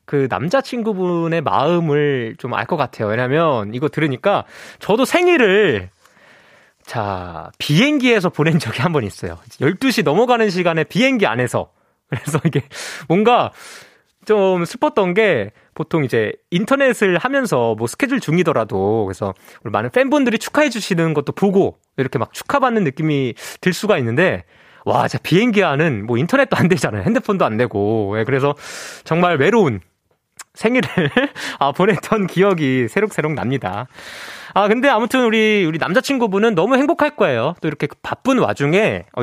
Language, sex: Korean, male